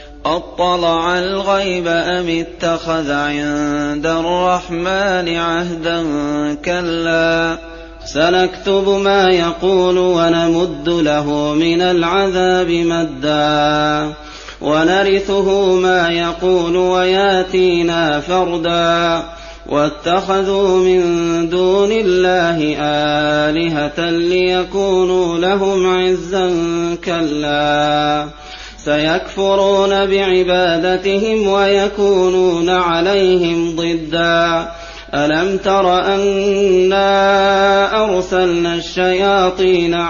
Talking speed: 60 wpm